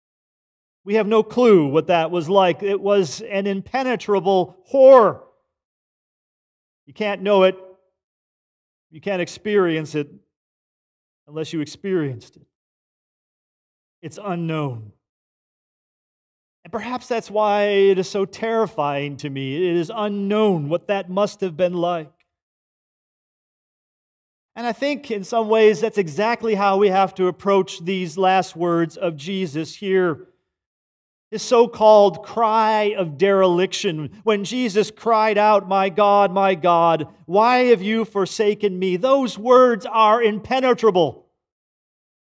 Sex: male